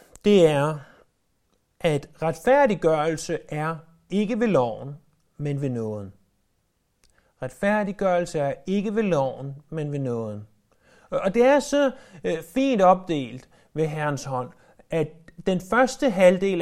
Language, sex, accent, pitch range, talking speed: Danish, male, native, 130-180 Hz, 115 wpm